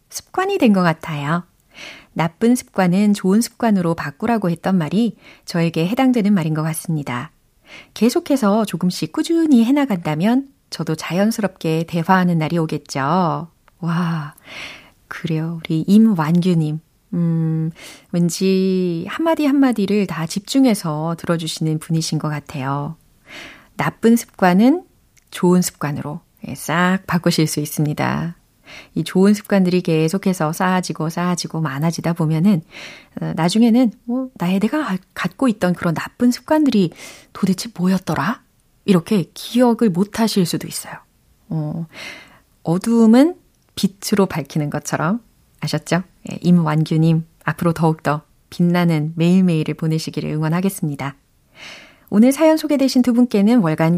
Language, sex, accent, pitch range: Korean, female, native, 160-215 Hz